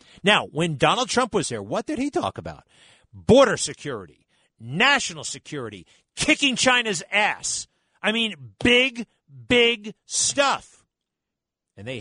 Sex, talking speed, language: male, 125 wpm, English